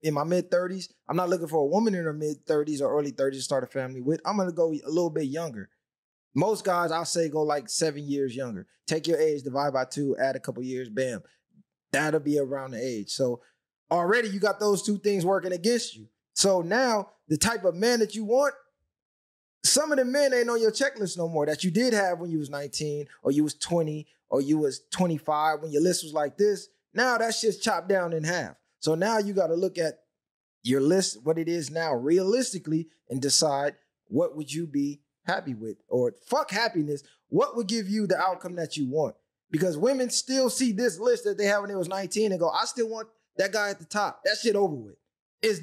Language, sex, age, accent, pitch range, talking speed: English, male, 20-39, American, 150-205 Hz, 230 wpm